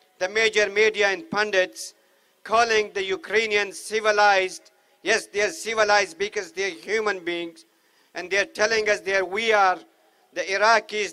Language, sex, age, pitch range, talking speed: English, male, 50-69, 200-225 Hz, 150 wpm